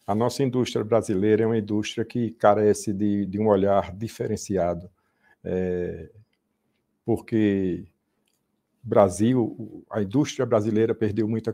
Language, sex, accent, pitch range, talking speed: Portuguese, male, Brazilian, 100-120 Hz, 115 wpm